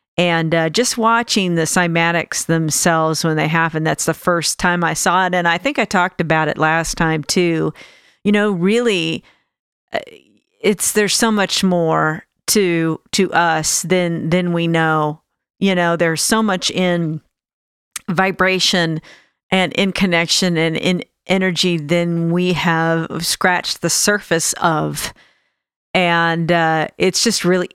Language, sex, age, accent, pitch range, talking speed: English, female, 50-69, American, 165-185 Hz, 145 wpm